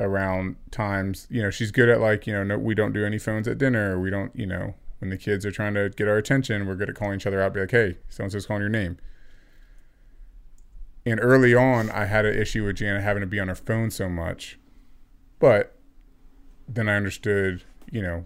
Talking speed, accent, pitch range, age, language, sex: 225 wpm, American, 95-115 Hz, 30-49, English, male